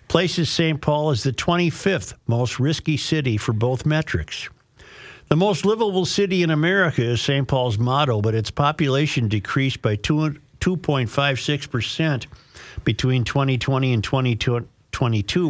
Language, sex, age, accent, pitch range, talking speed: English, male, 50-69, American, 120-155 Hz, 125 wpm